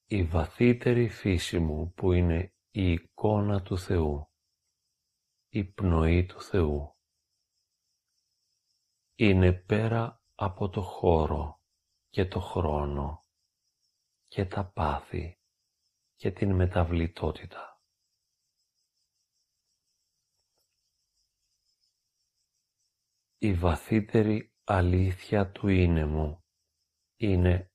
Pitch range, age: 85-105 Hz, 40-59